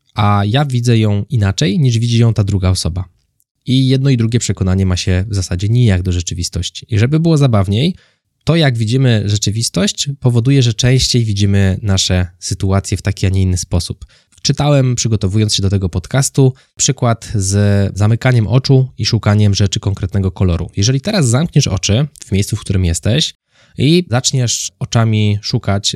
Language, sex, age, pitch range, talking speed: Polish, male, 20-39, 100-130 Hz, 165 wpm